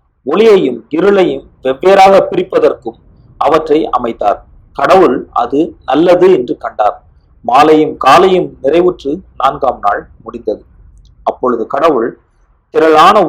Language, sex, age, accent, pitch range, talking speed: Tamil, male, 40-59, native, 120-190 Hz, 90 wpm